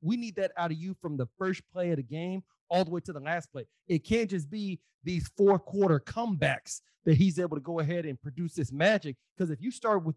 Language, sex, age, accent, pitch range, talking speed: English, male, 30-49, American, 145-170 Hz, 250 wpm